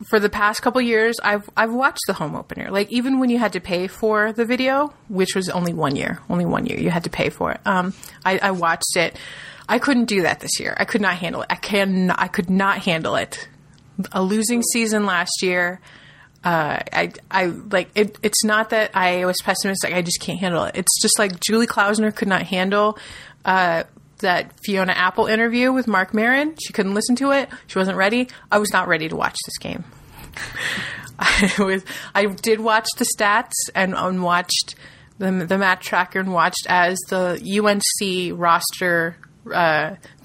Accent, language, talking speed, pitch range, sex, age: American, English, 200 wpm, 180-215 Hz, female, 30-49